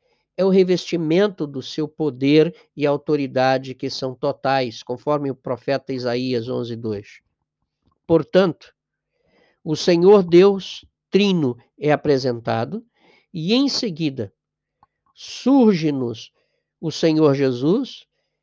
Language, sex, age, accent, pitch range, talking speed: Portuguese, male, 50-69, Brazilian, 135-180 Hz, 100 wpm